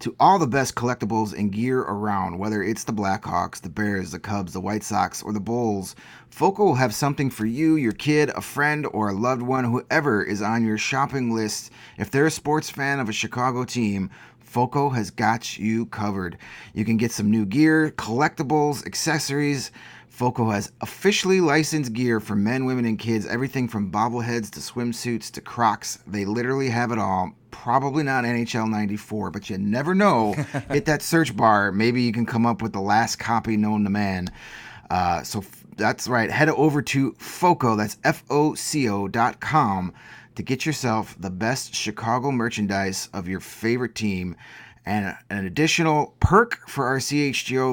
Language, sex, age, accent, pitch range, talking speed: English, male, 30-49, American, 105-135 Hz, 175 wpm